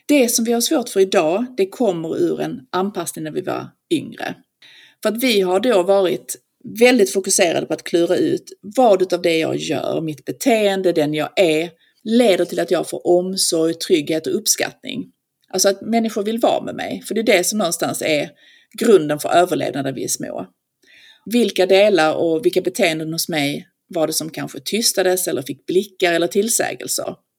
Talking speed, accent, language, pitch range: 185 wpm, native, Swedish, 170-240 Hz